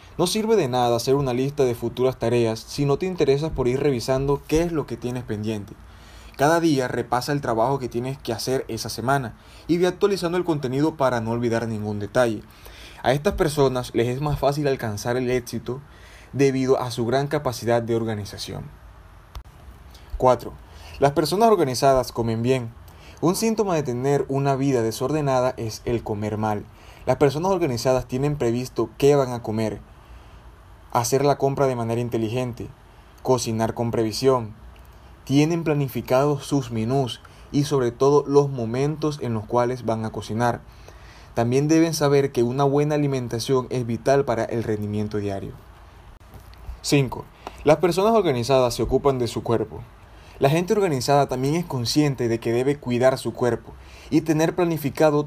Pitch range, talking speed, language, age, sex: 115-140 Hz, 160 wpm, Spanish, 20-39, male